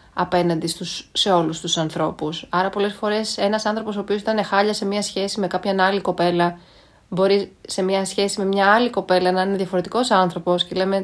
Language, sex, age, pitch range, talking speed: Greek, female, 30-49, 170-215 Hz, 195 wpm